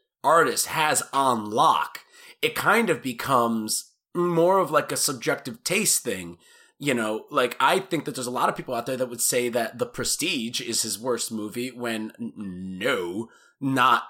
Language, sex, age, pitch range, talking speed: English, male, 30-49, 115-155 Hz, 175 wpm